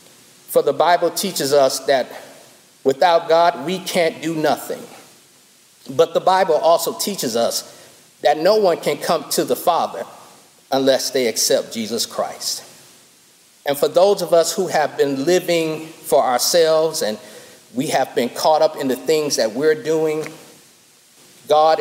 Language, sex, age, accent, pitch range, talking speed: English, male, 40-59, American, 140-185 Hz, 150 wpm